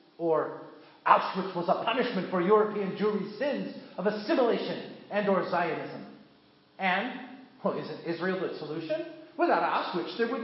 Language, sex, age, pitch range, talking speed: English, male, 40-59, 175-235 Hz, 140 wpm